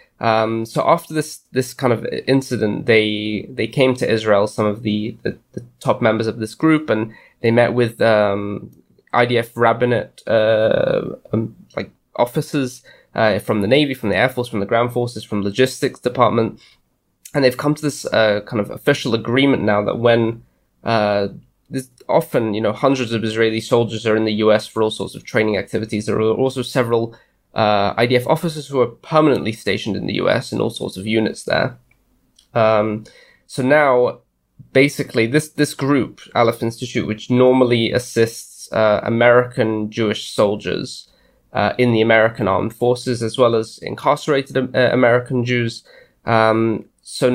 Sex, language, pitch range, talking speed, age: male, English, 110-125 Hz, 165 wpm, 20-39